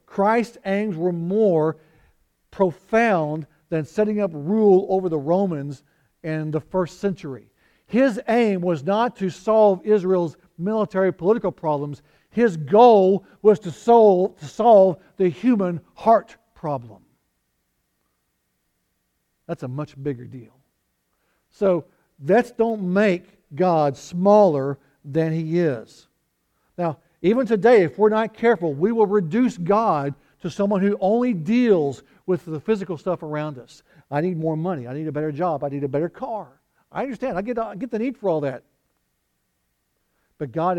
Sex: male